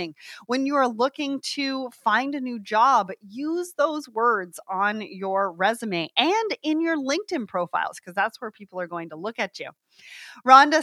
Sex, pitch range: female, 215-290 Hz